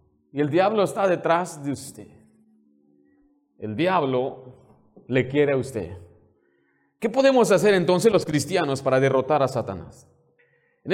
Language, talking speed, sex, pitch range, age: Spanish, 130 wpm, male, 135-185 Hz, 30-49